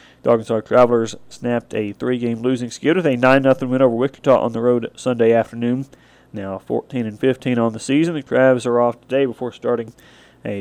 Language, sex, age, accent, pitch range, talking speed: English, male, 40-59, American, 115-130 Hz, 175 wpm